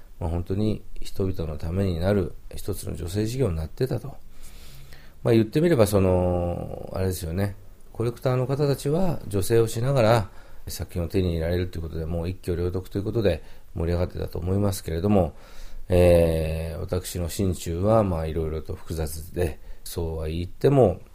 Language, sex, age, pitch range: Japanese, male, 40-59, 85-105 Hz